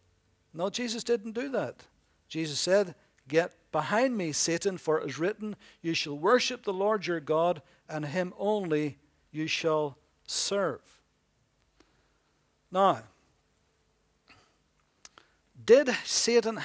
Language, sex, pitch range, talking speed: English, male, 145-200 Hz, 110 wpm